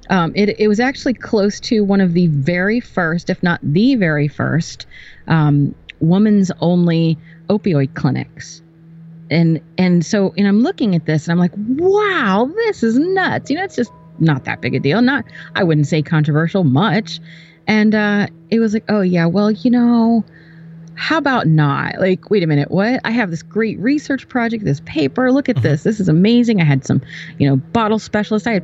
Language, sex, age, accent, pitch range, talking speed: English, female, 30-49, American, 160-220 Hz, 195 wpm